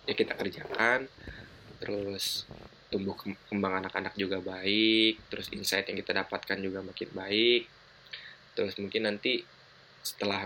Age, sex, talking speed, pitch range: 20-39, male, 120 wpm, 95-105 Hz